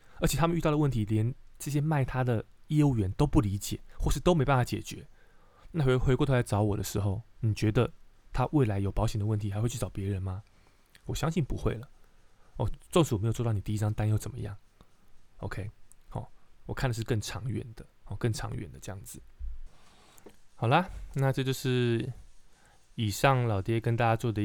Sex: male